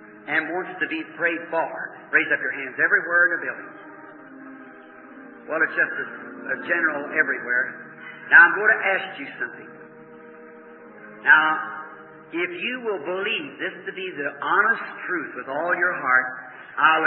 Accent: American